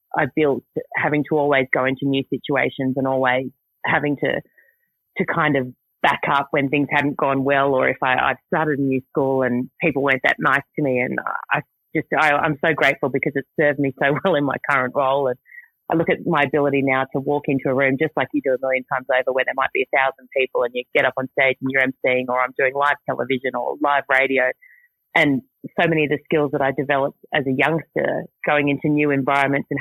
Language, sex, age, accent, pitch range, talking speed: English, female, 30-49, Australian, 135-150 Hz, 235 wpm